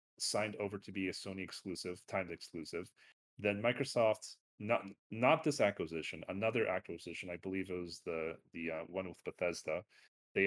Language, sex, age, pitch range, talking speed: English, male, 30-49, 90-105 Hz, 160 wpm